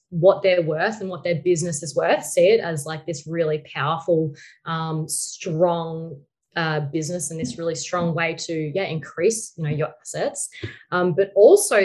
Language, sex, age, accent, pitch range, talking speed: English, female, 20-39, Australian, 160-180 Hz, 175 wpm